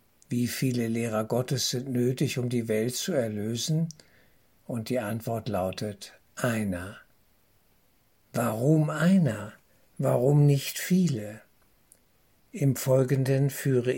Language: German